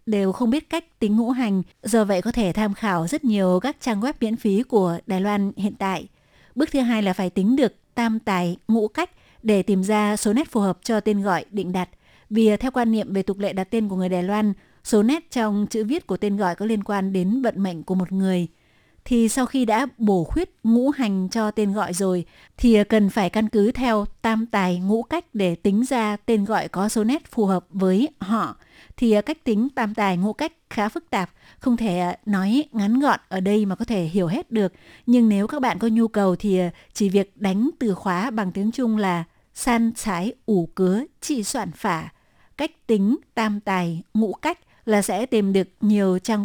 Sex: female